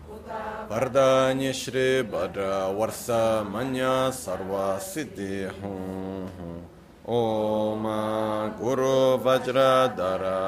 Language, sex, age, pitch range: Italian, male, 30-49, 95-125 Hz